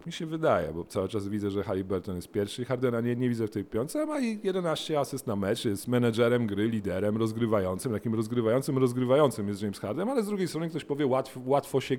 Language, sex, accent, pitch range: Polish, male, native, 115-160 Hz